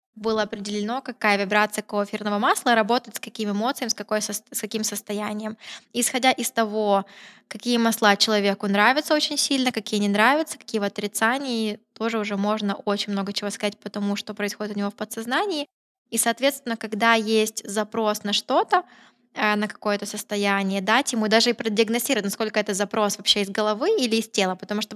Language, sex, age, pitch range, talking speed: Russian, female, 10-29, 210-245 Hz, 170 wpm